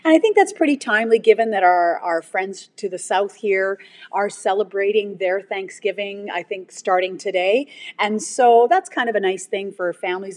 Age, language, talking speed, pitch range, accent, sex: 30-49, English, 190 wpm, 185-235 Hz, American, female